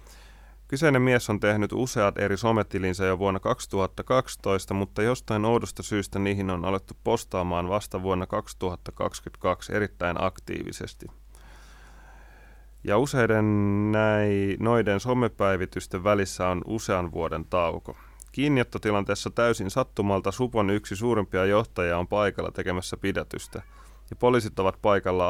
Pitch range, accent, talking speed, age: 95-110 Hz, native, 115 wpm, 30-49